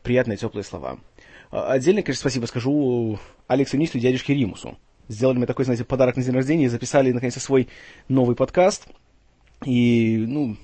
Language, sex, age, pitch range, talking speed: Russian, male, 20-39, 115-140 Hz, 150 wpm